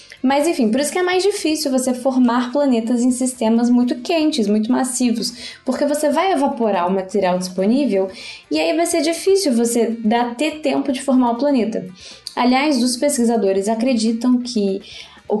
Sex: female